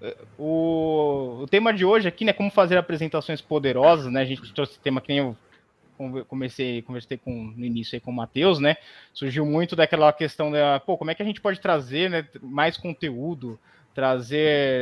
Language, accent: Portuguese, Brazilian